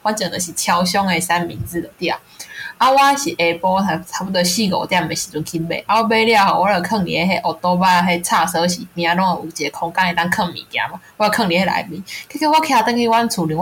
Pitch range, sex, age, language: 175-260 Hz, female, 20-39, Chinese